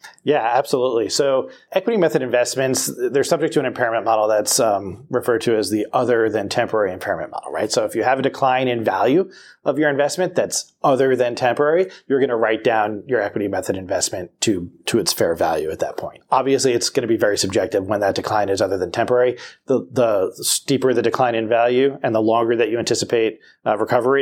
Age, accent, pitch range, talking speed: 30-49, American, 115-150 Hz, 210 wpm